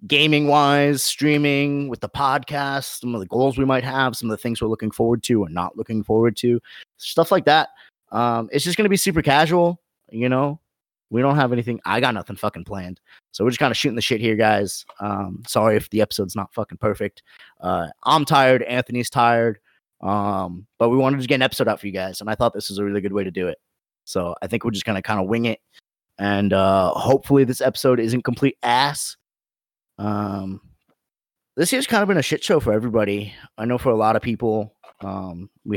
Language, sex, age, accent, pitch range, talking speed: English, male, 30-49, American, 105-145 Hz, 225 wpm